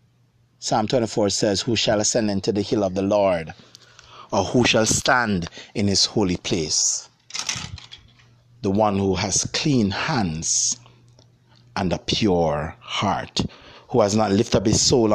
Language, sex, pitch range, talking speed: English, male, 105-125 Hz, 145 wpm